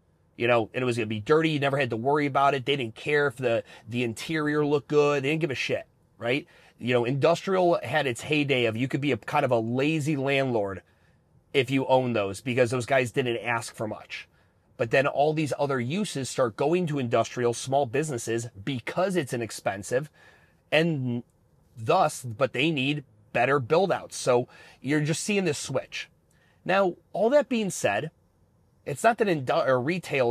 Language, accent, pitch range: English, American, 120-155 Hz